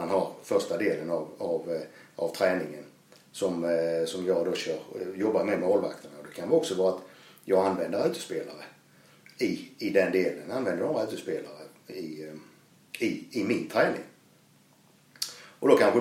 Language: Swedish